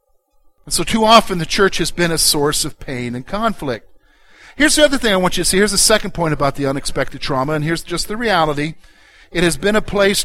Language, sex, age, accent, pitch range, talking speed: English, male, 50-69, American, 160-215 Hz, 235 wpm